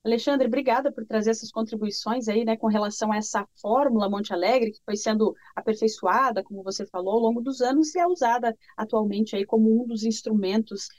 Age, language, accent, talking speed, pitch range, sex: 30-49, English, Brazilian, 190 wpm, 215-265 Hz, female